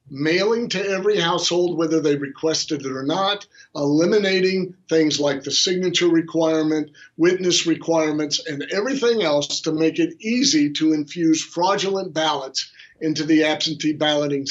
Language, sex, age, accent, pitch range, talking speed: English, male, 50-69, American, 150-185 Hz, 135 wpm